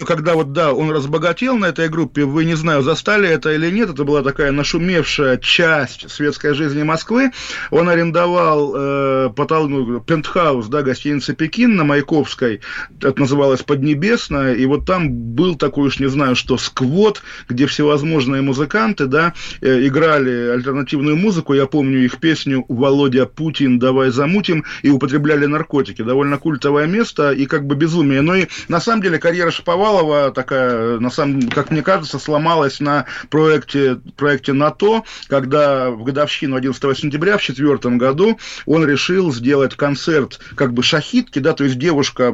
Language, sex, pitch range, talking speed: Russian, male, 135-160 Hz, 150 wpm